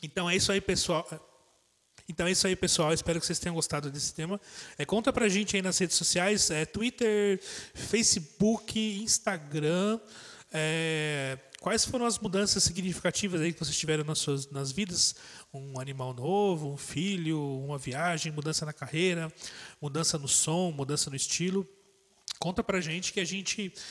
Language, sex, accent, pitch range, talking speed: Portuguese, male, Brazilian, 150-195 Hz, 165 wpm